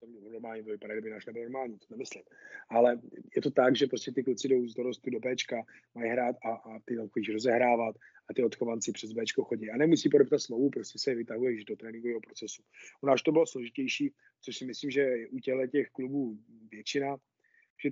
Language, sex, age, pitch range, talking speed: Slovak, male, 30-49, 115-140 Hz, 205 wpm